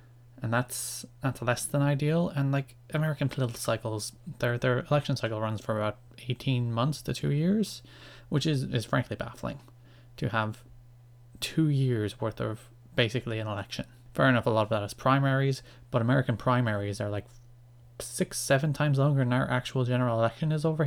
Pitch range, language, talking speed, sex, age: 115-135 Hz, English, 175 wpm, male, 20-39